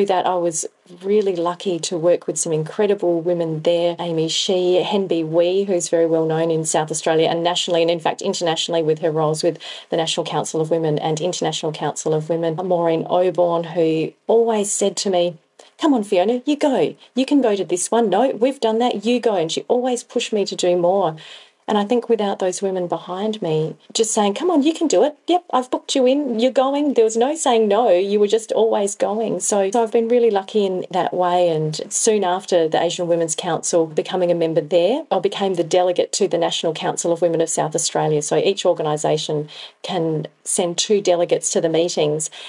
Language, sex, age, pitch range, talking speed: English, female, 30-49, 165-210 Hz, 215 wpm